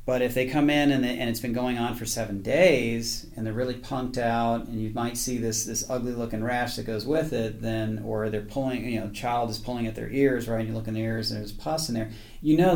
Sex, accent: male, American